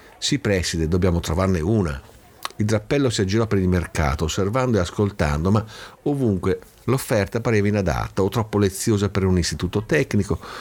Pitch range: 85-110 Hz